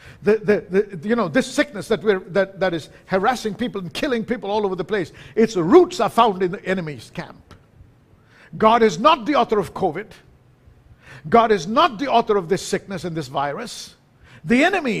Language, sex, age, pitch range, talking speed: English, male, 50-69, 170-230 Hz, 195 wpm